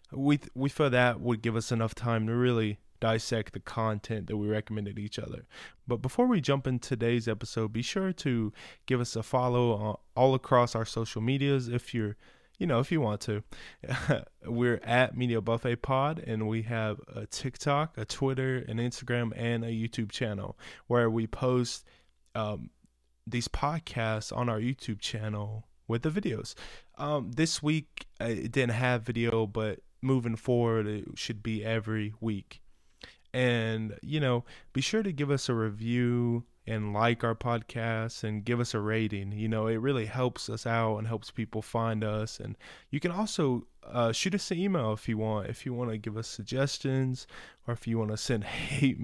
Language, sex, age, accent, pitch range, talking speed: English, male, 20-39, American, 110-130 Hz, 185 wpm